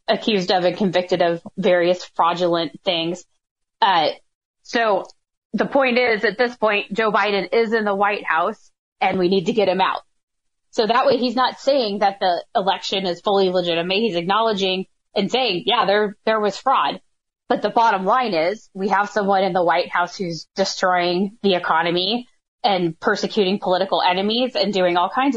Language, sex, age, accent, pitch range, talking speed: English, female, 20-39, American, 185-220 Hz, 175 wpm